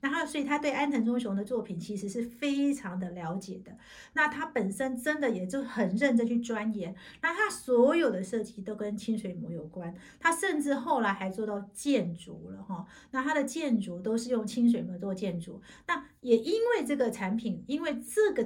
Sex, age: female, 50-69